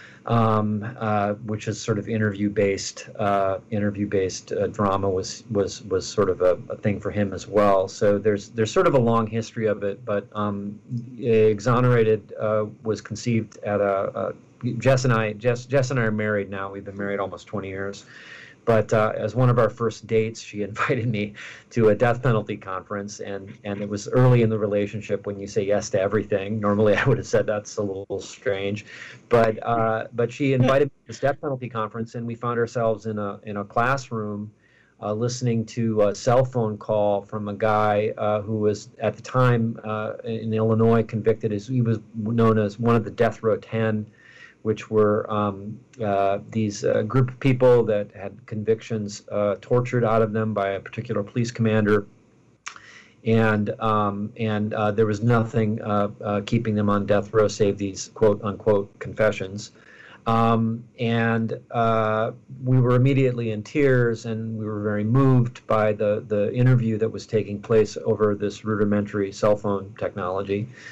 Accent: American